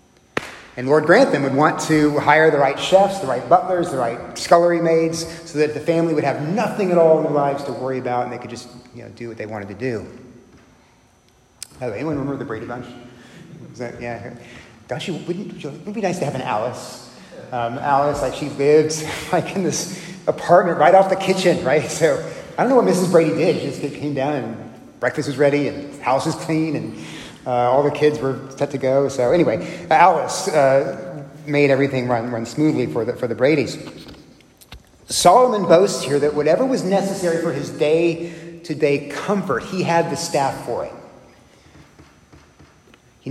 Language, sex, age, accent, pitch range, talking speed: English, male, 30-49, American, 135-170 Hz, 195 wpm